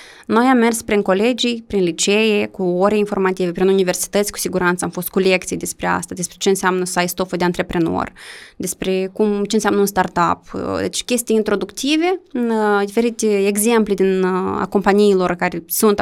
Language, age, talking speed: Romanian, 20-39, 165 wpm